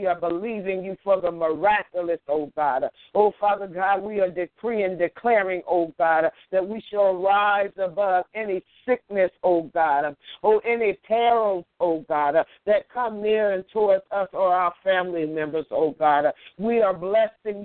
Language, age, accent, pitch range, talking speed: English, 60-79, American, 180-215 Hz, 160 wpm